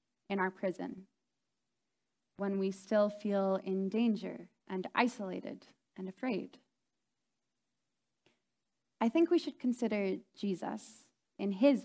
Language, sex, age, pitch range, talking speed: English, female, 20-39, 200-275 Hz, 105 wpm